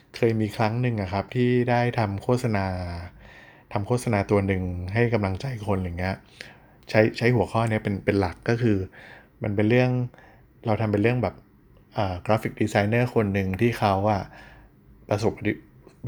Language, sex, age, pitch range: Thai, male, 20-39, 100-120 Hz